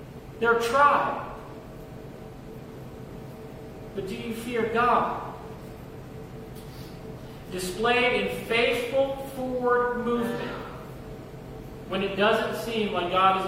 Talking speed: 85 wpm